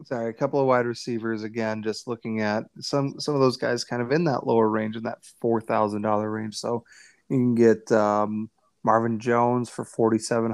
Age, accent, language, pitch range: 30-49, American, English, 115-130 Hz